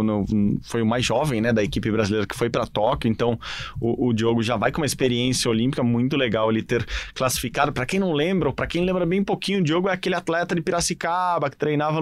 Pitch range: 115-150 Hz